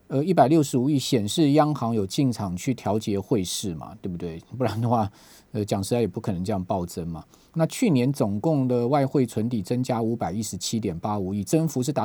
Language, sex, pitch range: Chinese, male, 110-145 Hz